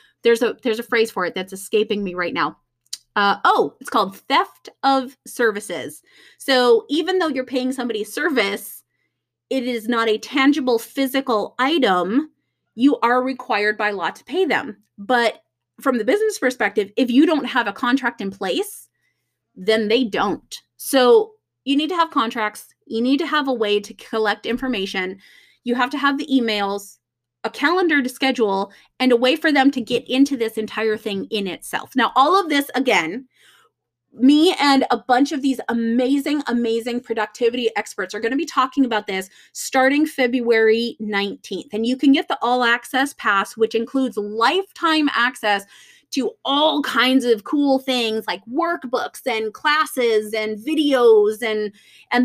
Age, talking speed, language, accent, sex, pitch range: 30-49, 165 wpm, English, American, female, 215-275 Hz